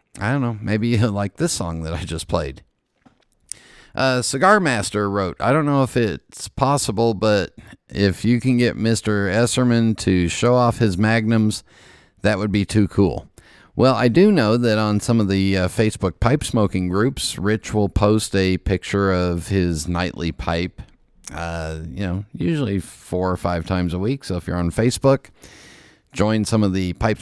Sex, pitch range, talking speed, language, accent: male, 95-120 Hz, 180 wpm, English, American